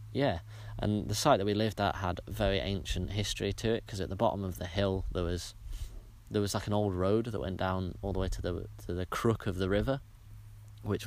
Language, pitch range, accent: English, 95-105 Hz, British